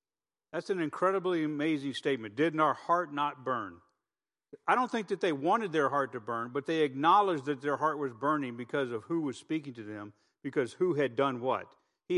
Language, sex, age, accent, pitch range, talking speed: English, male, 50-69, American, 130-165 Hz, 200 wpm